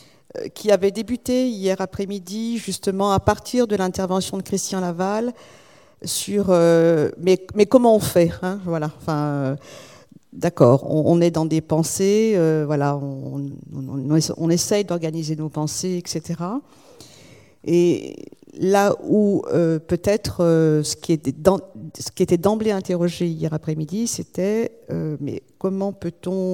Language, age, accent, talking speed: French, 50-69, French, 140 wpm